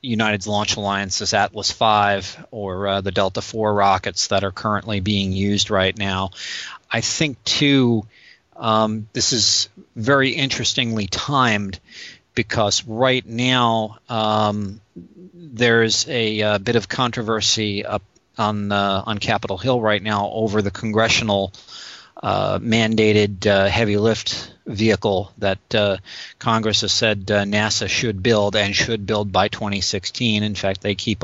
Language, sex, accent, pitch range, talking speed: English, male, American, 100-115 Hz, 140 wpm